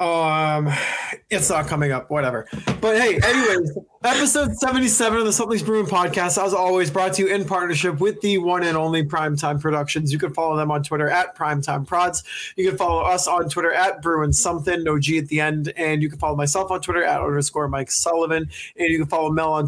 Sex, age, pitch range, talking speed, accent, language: male, 20-39, 150-185 Hz, 210 wpm, American, English